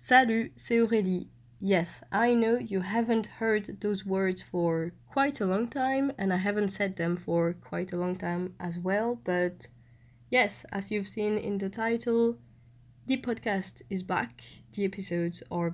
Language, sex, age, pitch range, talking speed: French, female, 20-39, 170-200 Hz, 165 wpm